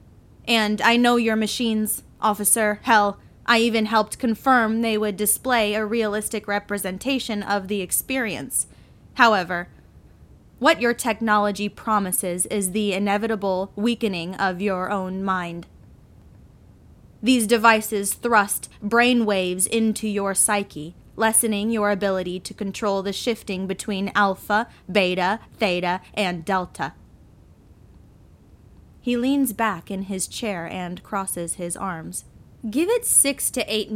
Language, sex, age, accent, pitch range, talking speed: English, female, 10-29, American, 195-235 Hz, 120 wpm